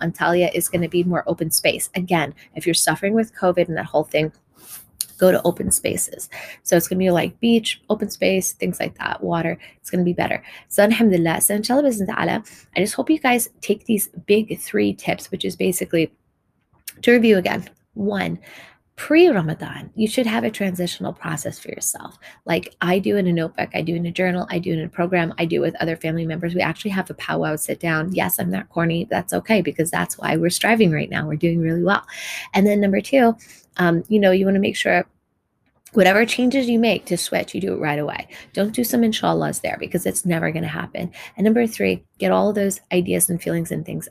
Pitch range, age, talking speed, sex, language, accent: 170-205 Hz, 20-39, 225 wpm, female, English, American